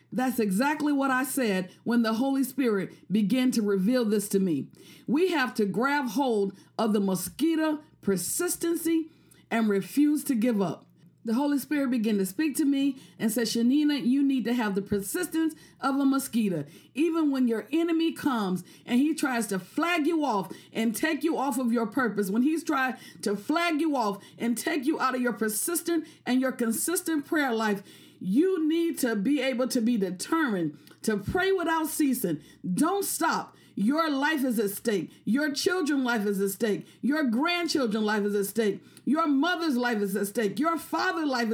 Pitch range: 215-305 Hz